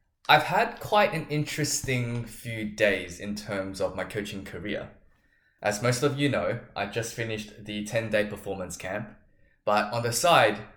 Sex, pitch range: male, 100-130 Hz